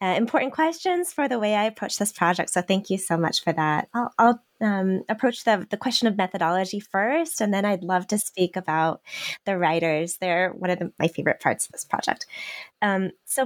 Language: English